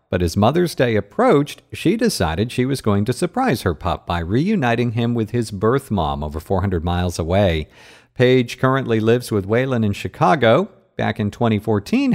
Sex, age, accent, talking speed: male, 50-69, American, 175 wpm